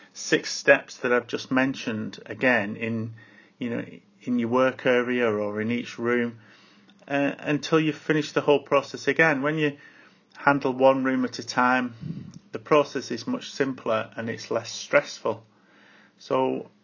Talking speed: 155 wpm